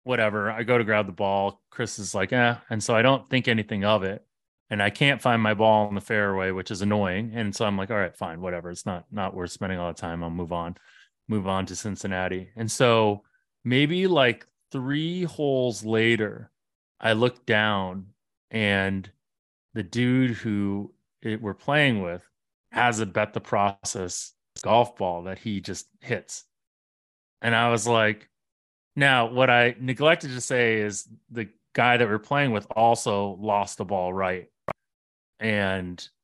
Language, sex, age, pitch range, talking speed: English, male, 30-49, 95-120 Hz, 175 wpm